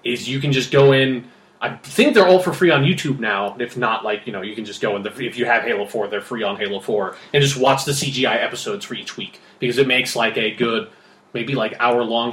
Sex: male